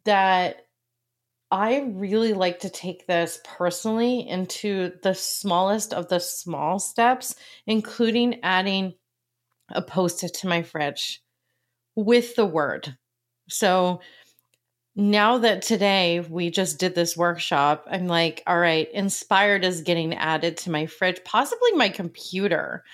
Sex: female